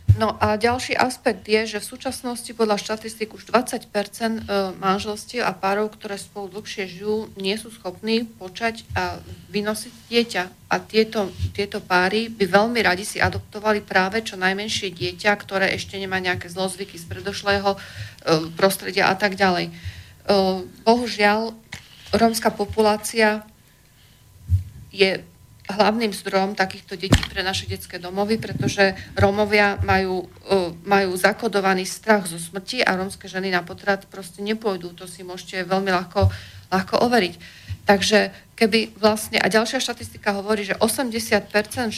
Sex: female